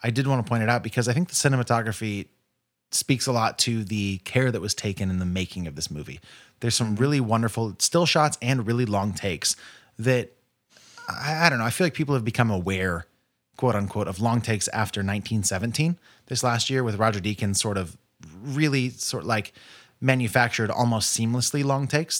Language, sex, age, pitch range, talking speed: English, male, 30-49, 100-130 Hz, 195 wpm